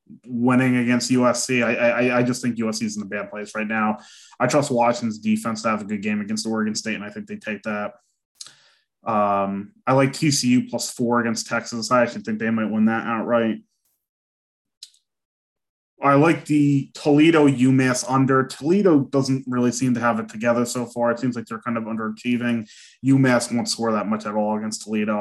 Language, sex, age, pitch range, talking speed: English, male, 20-39, 110-130 Hz, 195 wpm